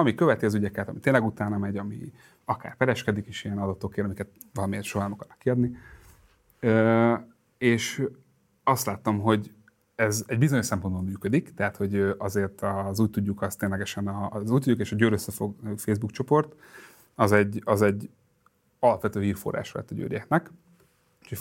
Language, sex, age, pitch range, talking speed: Hungarian, male, 30-49, 100-120 Hz, 155 wpm